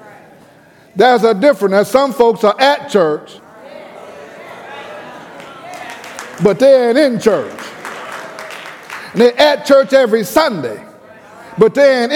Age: 50-69